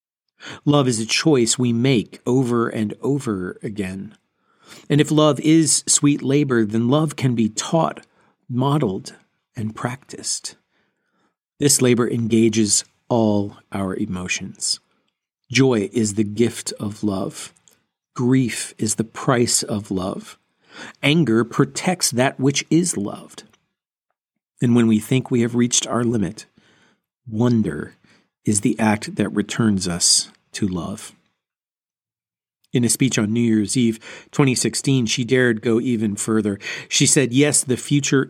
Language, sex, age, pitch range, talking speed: English, male, 40-59, 110-145 Hz, 130 wpm